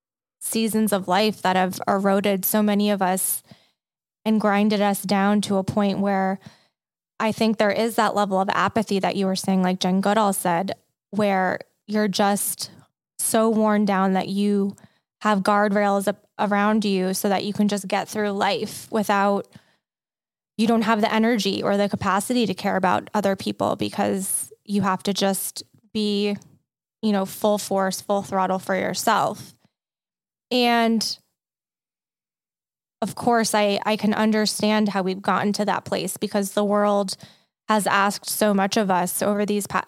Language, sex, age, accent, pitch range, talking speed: English, female, 20-39, American, 195-220 Hz, 160 wpm